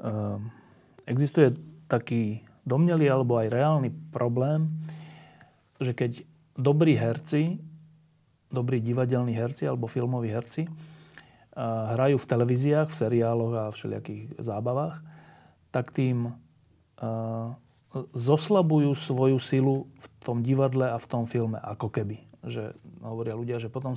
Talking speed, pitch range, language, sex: 120 wpm, 120-155 Hz, Slovak, male